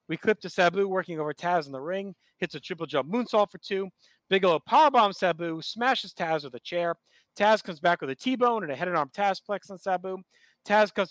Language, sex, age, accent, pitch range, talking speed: English, male, 30-49, American, 160-200 Hz, 225 wpm